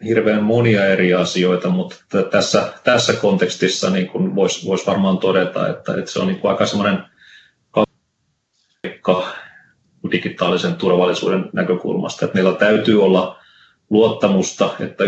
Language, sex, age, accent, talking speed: Finnish, male, 30-49, native, 125 wpm